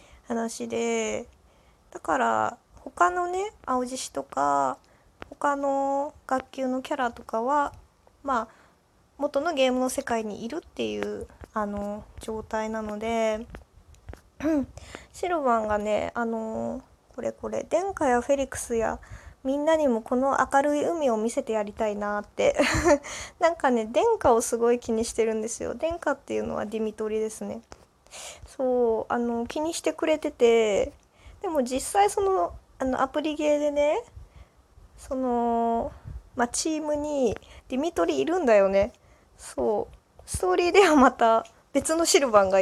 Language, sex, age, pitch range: Japanese, female, 20-39, 220-295 Hz